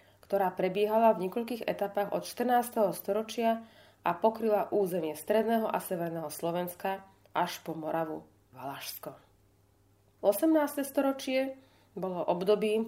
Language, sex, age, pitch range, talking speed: Slovak, female, 30-49, 165-220 Hz, 105 wpm